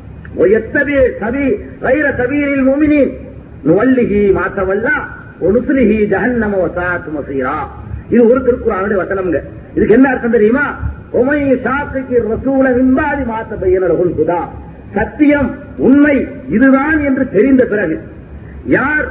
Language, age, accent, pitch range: Tamil, 40-59, native, 225-280 Hz